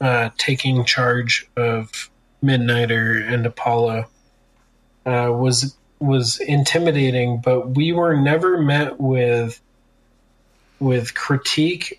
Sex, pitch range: male, 125-150 Hz